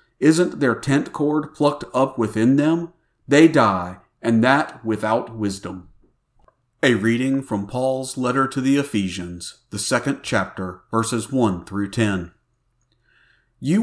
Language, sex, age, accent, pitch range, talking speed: English, male, 50-69, American, 110-150 Hz, 130 wpm